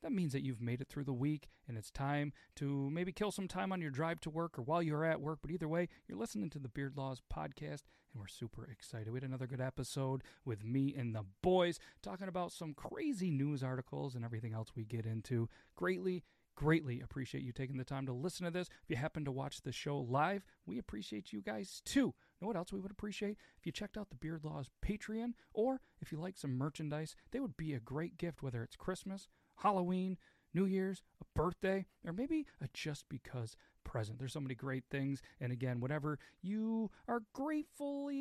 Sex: male